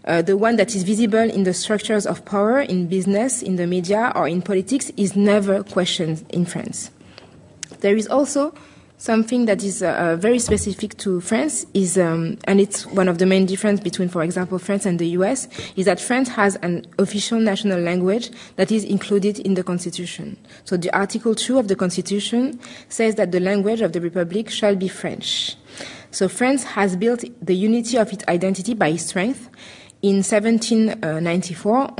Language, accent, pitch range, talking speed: English, French, 185-225 Hz, 175 wpm